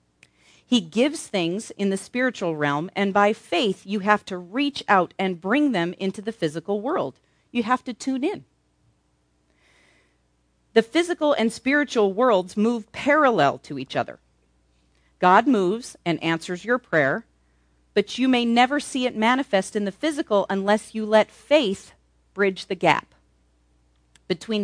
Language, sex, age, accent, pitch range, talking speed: English, female, 40-59, American, 155-225 Hz, 150 wpm